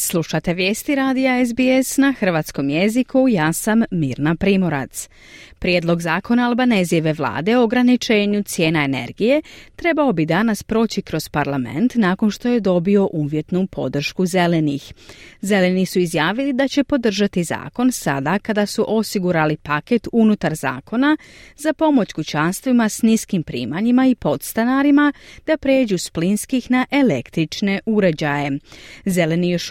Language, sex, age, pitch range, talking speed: Croatian, female, 30-49, 155-235 Hz, 125 wpm